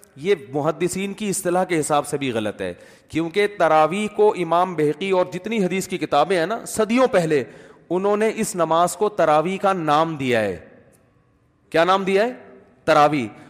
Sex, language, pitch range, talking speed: male, Urdu, 165-210 Hz, 175 wpm